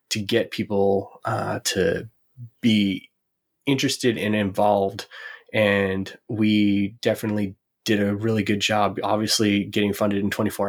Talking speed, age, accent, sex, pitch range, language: 125 wpm, 20-39, American, male, 100-110 Hz, English